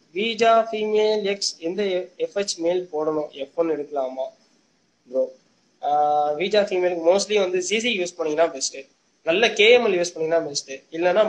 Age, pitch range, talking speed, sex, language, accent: 20-39, 165-225 Hz, 60 wpm, male, Tamil, native